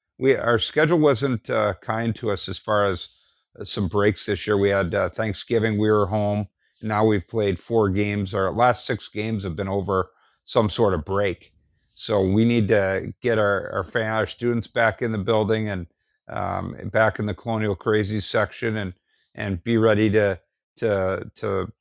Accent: American